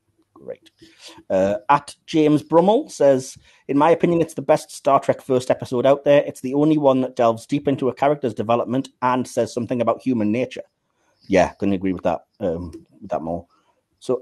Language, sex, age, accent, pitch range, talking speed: English, male, 30-49, British, 120-145 Hz, 185 wpm